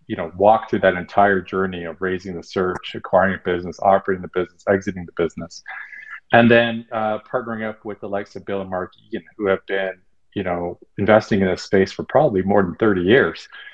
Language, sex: English, male